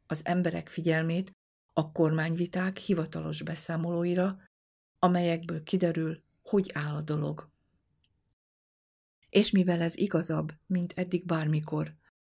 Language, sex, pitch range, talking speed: Hungarian, female, 160-180 Hz, 95 wpm